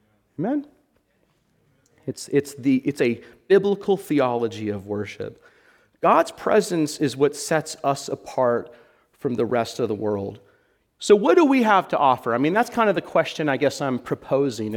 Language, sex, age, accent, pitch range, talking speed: English, male, 40-59, American, 125-175 Hz, 165 wpm